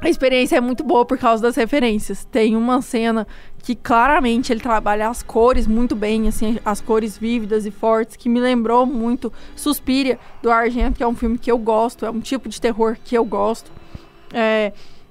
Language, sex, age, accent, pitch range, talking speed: Portuguese, female, 20-39, Brazilian, 230-255 Hz, 195 wpm